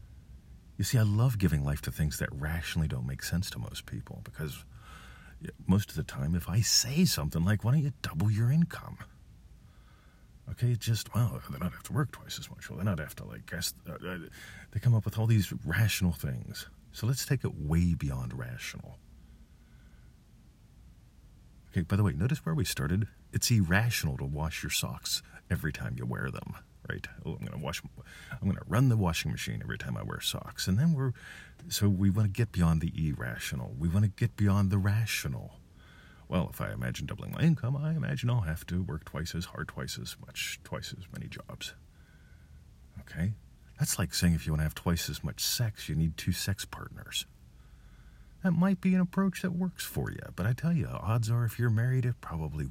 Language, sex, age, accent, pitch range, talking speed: English, male, 40-59, American, 80-120 Hz, 205 wpm